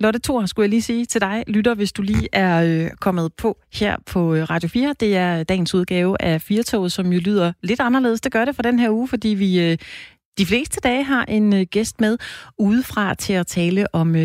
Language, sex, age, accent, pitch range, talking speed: Danish, female, 30-49, native, 170-225 Hz, 220 wpm